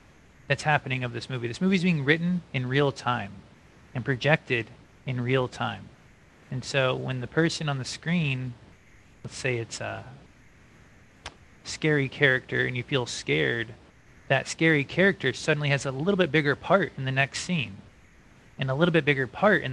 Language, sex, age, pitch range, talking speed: English, male, 20-39, 120-150 Hz, 175 wpm